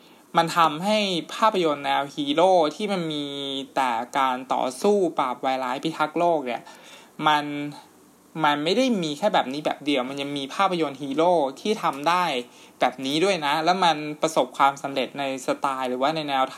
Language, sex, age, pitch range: Thai, male, 20-39, 140-180 Hz